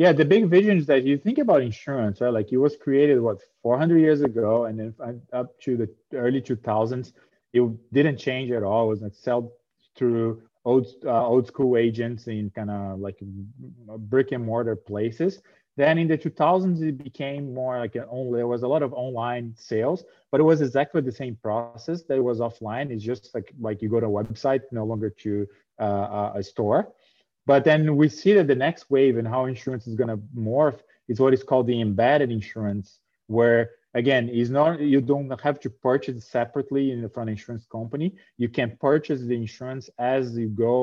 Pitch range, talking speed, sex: 115-140 Hz, 195 wpm, male